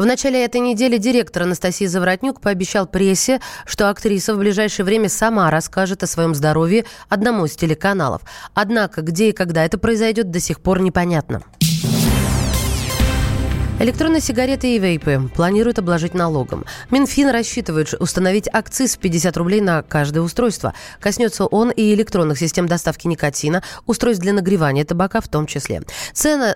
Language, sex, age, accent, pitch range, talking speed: Russian, female, 20-39, native, 170-225 Hz, 145 wpm